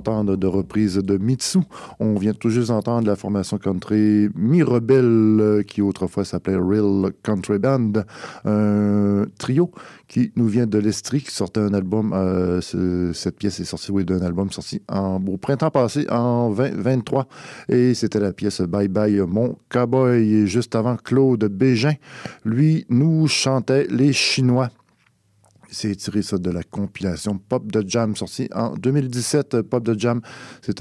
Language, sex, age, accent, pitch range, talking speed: French, male, 50-69, French, 100-125 Hz, 160 wpm